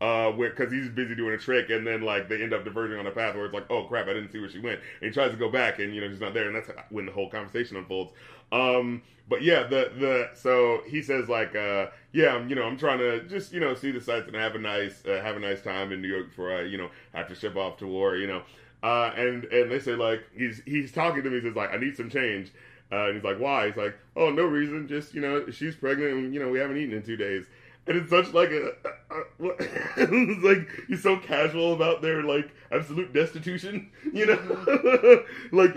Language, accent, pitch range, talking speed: English, American, 110-155 Hz, 260 wpm